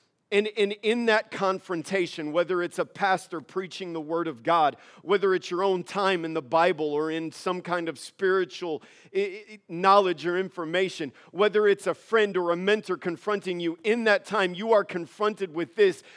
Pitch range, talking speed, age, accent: 175-215 Hz, 175 wpm, 50-69, American